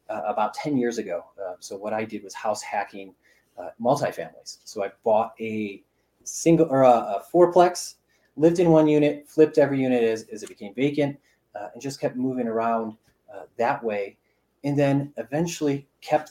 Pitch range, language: 110-145 Hz, English